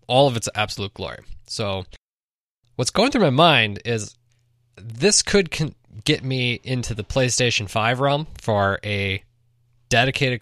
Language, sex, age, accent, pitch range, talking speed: English, male, 20-39, American, 105-130 Hz, 145 wpm